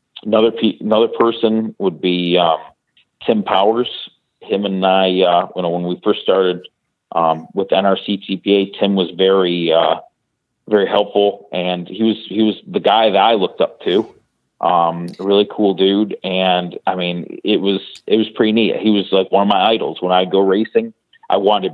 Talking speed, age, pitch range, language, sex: 195 wpm, 40-59, 90-105 Hz, English, male